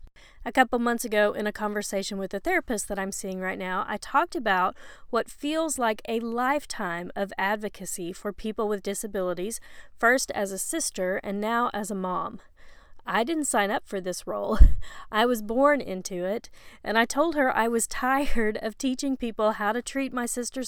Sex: female